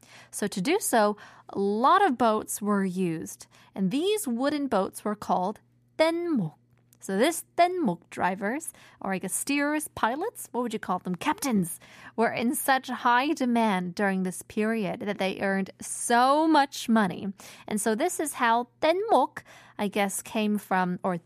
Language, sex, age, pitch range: Korean, female, 20-39, 190-255 Hz